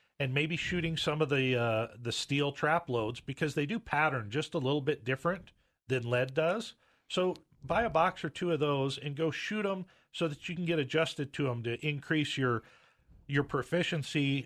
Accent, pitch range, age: American, 130-165 Hz, 40-59